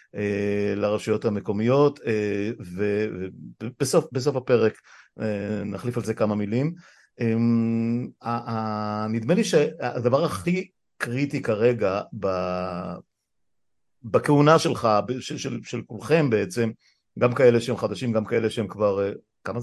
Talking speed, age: 90 wpm, 50-69